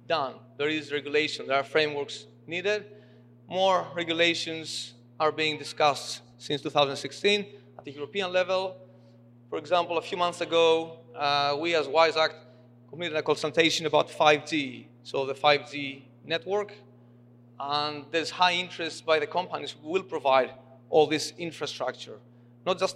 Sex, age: male, 30-49